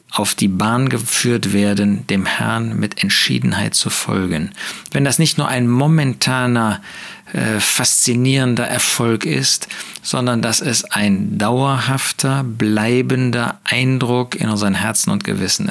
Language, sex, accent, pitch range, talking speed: German, male, German, 105-140 Hz, 125 wpm